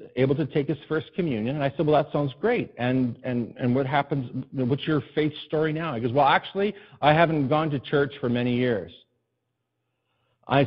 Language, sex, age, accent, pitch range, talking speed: English, male, 50-69, American, 130-185 Hz, 200 wpm